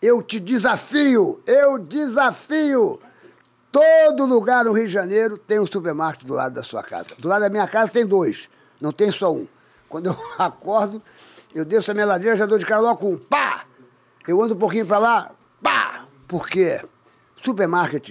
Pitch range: 160-220 Hz